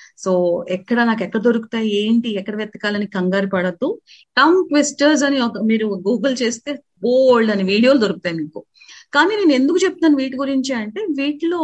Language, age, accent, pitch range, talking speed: Telugu, 30-49, native, 205-290 Hz, 145 wpm